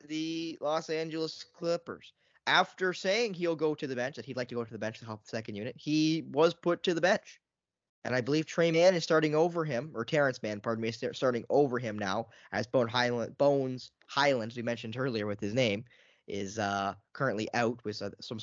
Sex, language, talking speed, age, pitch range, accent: male, English, 215 wpm, 10-29, 115-160 Hz, American